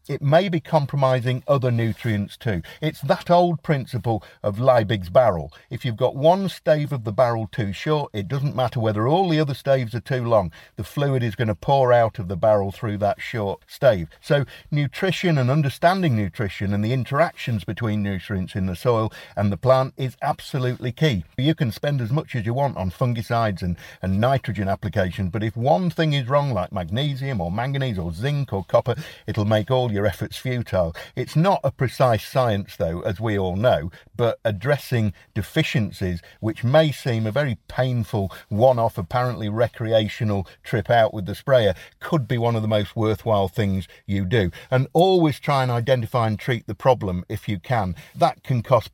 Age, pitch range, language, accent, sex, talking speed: 50-69, 100-135 Hz, English, British, male, 190 wpm